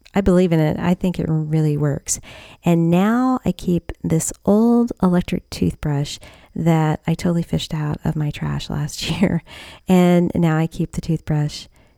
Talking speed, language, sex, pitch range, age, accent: 165 wpm, English, female, 145-175 Hz, 40-59, American